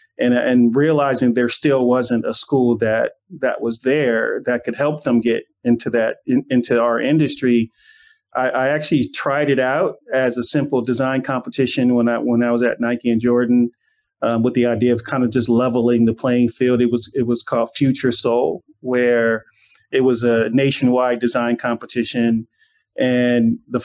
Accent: American